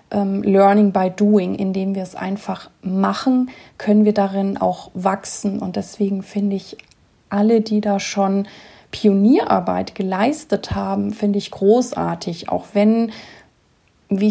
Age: 30-49